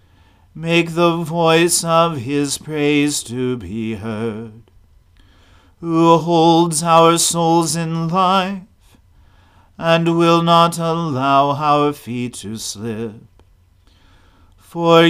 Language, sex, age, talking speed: English, male, 40-59, 95 wpm